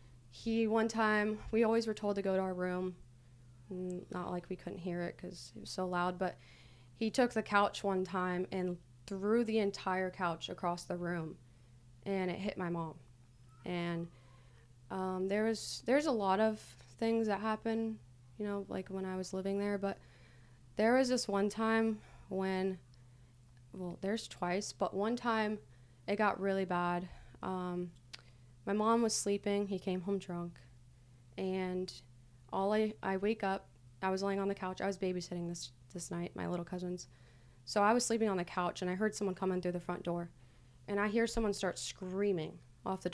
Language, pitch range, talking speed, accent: English, 145-200 Hz, 180 wpm, American